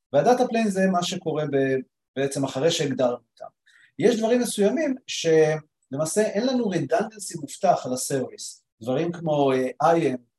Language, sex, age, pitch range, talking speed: English, male, 40-59, 130-180 Hz, 100 wpm